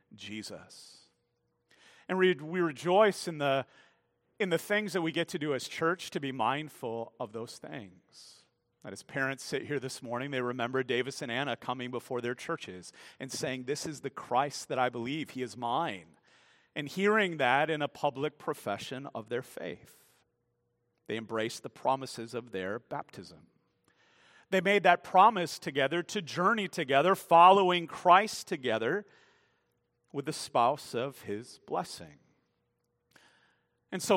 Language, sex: English, male